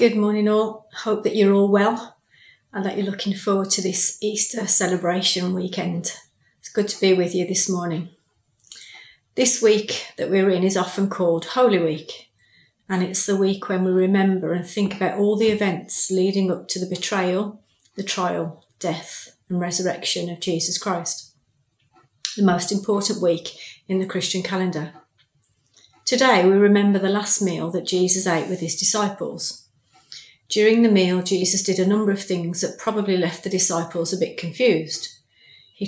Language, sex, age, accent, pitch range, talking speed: English, female, 30-49, British, 170-200 Hz, 165 wpm